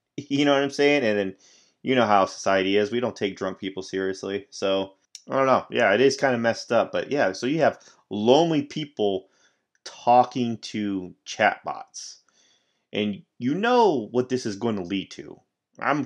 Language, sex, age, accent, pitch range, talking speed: English, male, 30-49, American, 95-140 Hz, 185 wpm